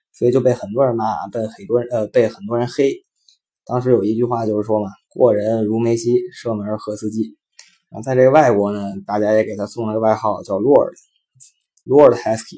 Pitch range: 105-135 Hz